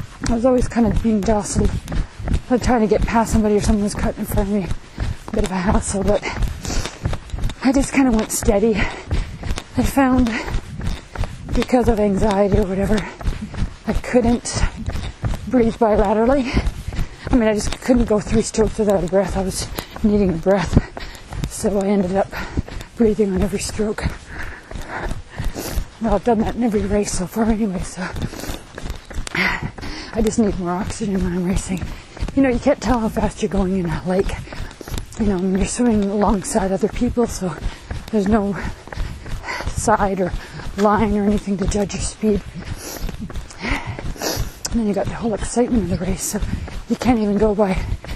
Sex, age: female, 30-49